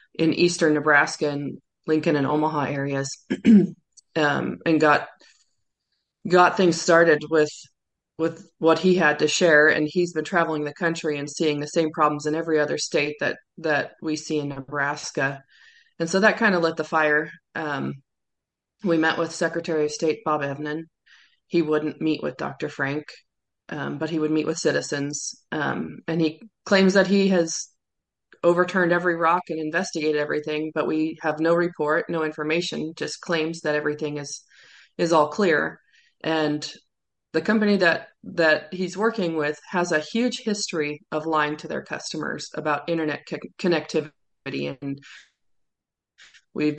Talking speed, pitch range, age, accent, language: 155 wpm, 150-170 Hz, 20-39, American, English